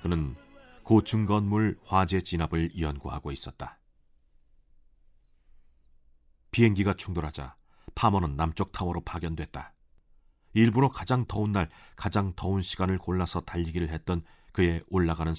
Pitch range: 70-100 Hz